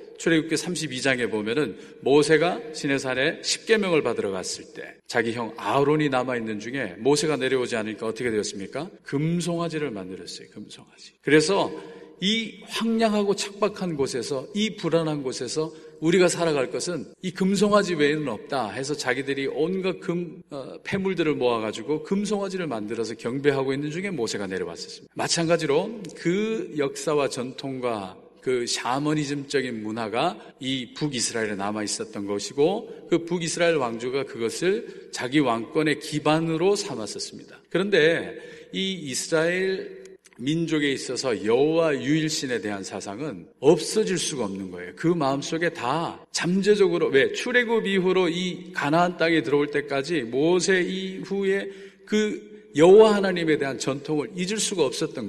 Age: 40-59